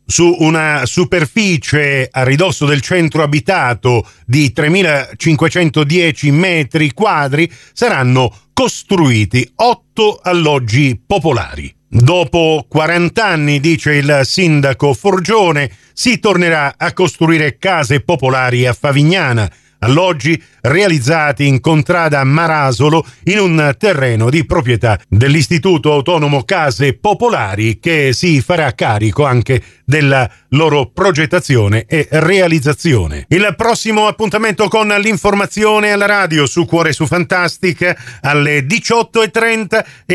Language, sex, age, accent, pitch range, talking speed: Italian, male, 50-69, native, 140-190 Hz, 105 wpm